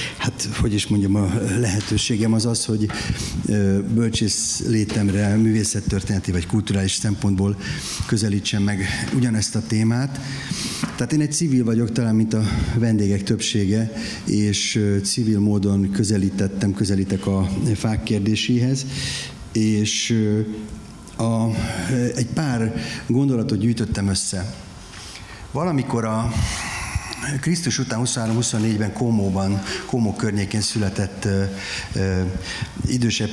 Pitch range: 100-115 Hz